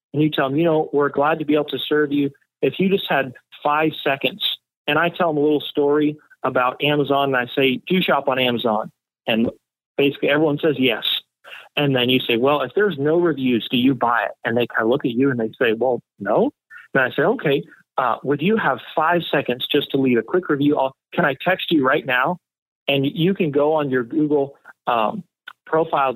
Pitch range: 135-160 Hz